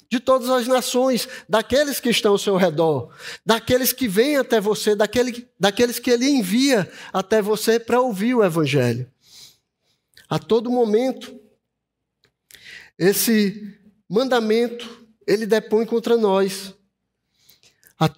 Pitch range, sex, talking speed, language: 170-225 Hz, male, 115 wpm, Portuguese